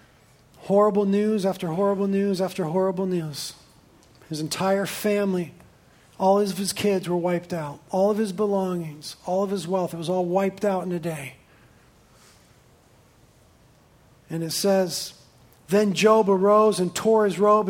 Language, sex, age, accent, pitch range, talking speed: English, male, 40-59, American, 175-205 Hz, 150 wpm